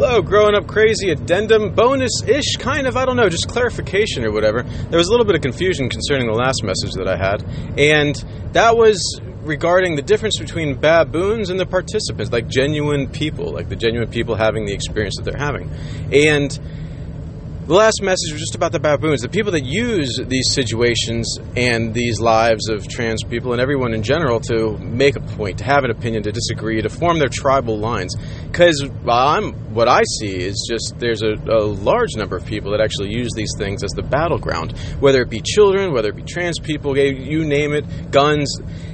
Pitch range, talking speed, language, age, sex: 110-145 Hz, 195 wpm, English, 30-49, male